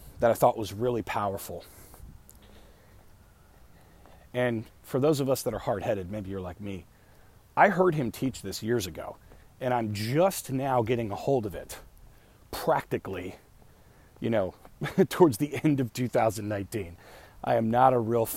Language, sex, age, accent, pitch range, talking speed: English, male, 40-59, American, 95-125 Hz, 155 wpm